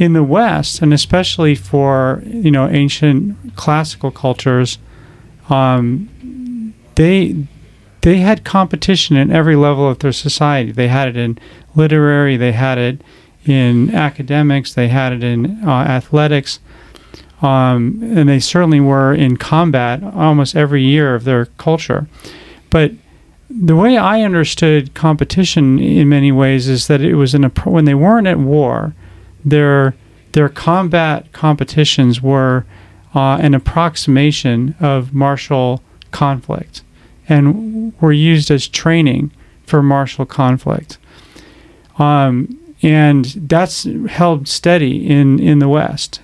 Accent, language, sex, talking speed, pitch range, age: American, English, male, 130 wpm, 130-160 Hz, 40-59